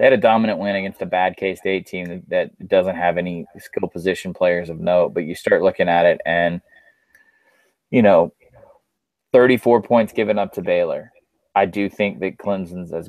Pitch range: 90-115 Hz